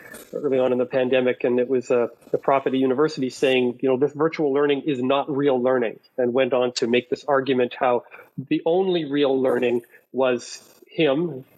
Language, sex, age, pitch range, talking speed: English, male, 40-59, 130-165 Hz, 190 wpm